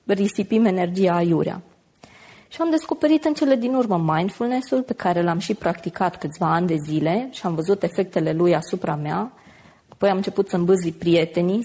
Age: 20-39